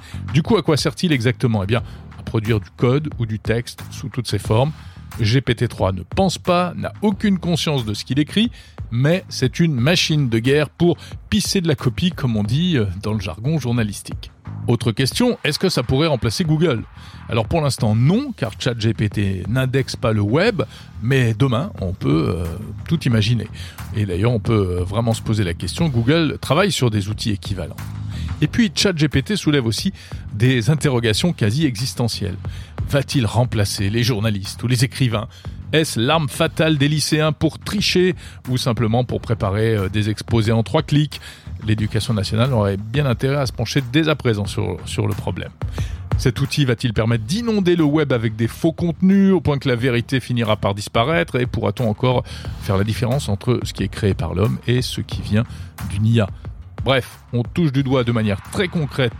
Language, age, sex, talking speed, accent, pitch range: French, 40-59, male, 185 wpm, French, 105-145 Hz